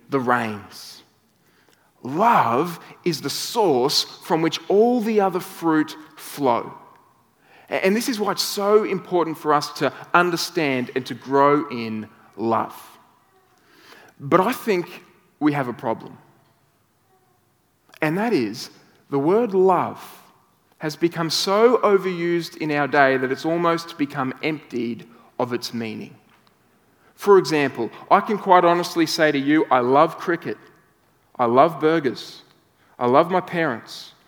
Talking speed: 135 wpm